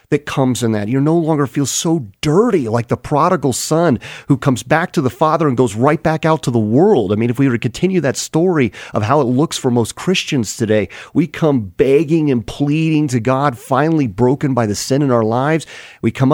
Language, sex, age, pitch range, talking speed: English, male, 40-59, 110-155 Hz, 230 wpm